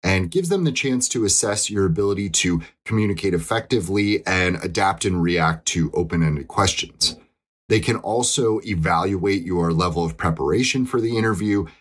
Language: English